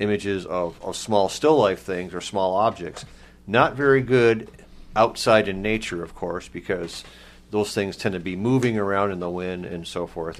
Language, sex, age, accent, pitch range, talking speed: English, male, 40-59, American, 95-115 Hz, 185 wpm